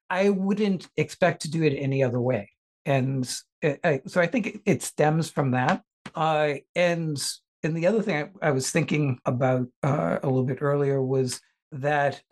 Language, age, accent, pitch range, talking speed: English, 60-79, American, 135-180 Hz, 170 wpm